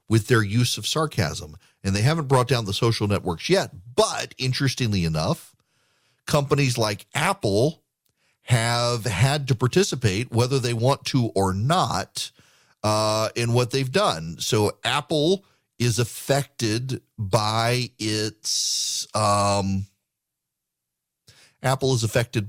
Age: 40-59